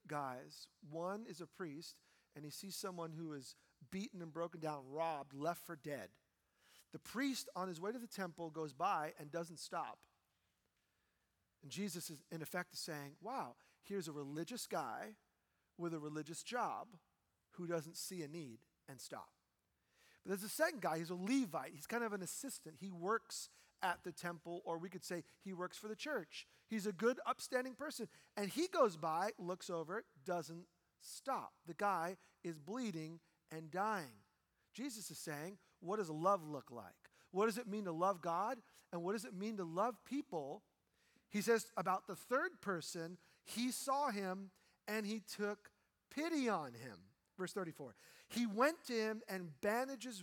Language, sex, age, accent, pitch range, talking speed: English, male, 40-59, American, 160-215 Hz, 175 wpm